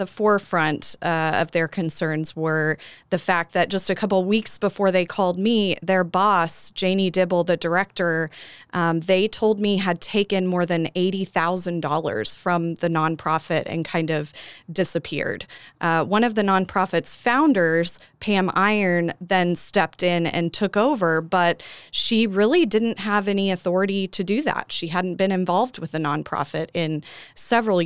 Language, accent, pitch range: English, American, 165-195 Hz